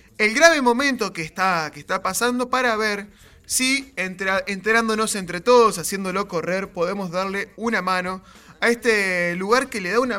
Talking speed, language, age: 160 wpm, English, 20-39